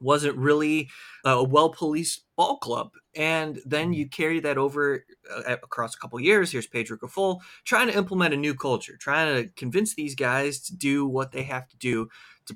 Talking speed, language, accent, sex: 185 wpm, English, American, male